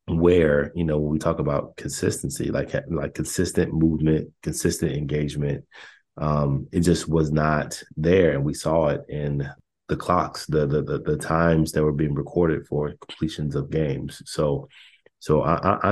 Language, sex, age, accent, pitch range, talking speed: English, male, 30-49, American, 70-80 Hz, 160 wpm